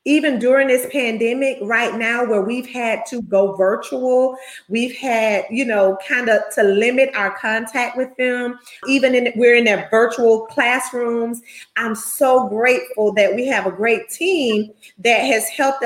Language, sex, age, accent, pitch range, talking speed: English, female, 30-49, American, 215-260 Hz, 165 wpm